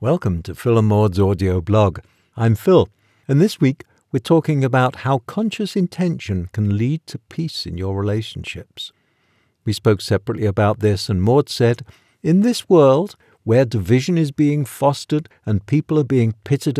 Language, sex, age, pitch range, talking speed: English, male, 60-79, 105-145 Hz, 165 wpm